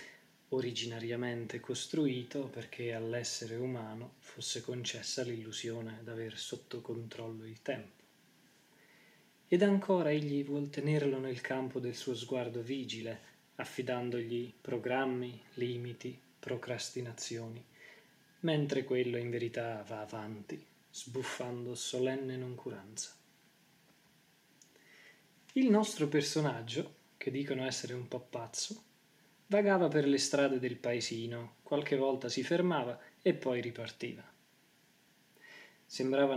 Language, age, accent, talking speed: Italian, 20-39, native, 100 wpm